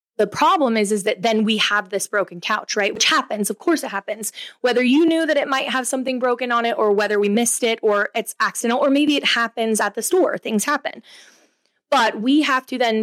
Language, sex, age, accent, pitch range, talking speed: English, female, 20-39, American, 200-230 Hz, 235 wpm